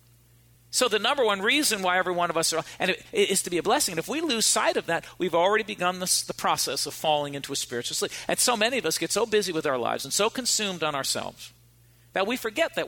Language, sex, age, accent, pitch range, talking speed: English, male, 50-69, American, 135-195 Hz, 265 wpm